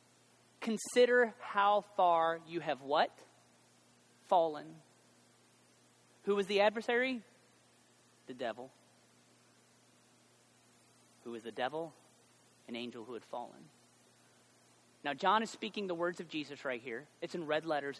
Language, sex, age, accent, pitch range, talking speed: English, male, 30-49, American, 135-180 Hz, 120 wpm